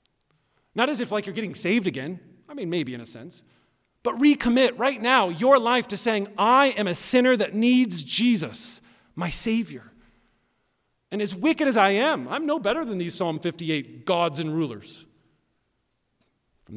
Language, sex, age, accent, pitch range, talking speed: English, male, 40-59, American, 125-200 Hz, 170 wpm